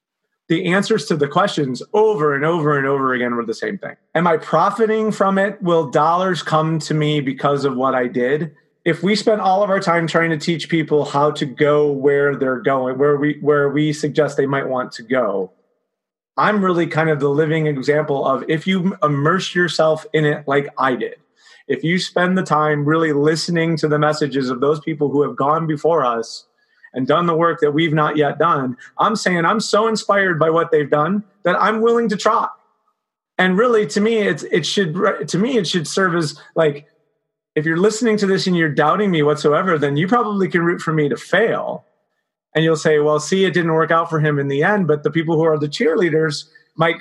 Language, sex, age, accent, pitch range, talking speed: English, male, 30-49, American, 150-185 Hz, 215 wpm